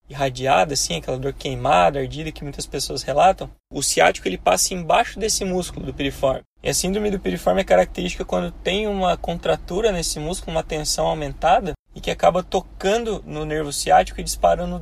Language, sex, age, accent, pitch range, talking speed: Portuguese, male, 20-39, Brazilian, 145-180 Hz, 180 wpm